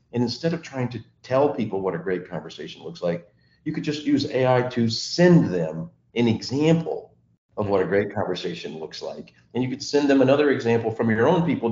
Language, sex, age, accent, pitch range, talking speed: English, male, 50-69, American, 100-140 Hz, 210 wpm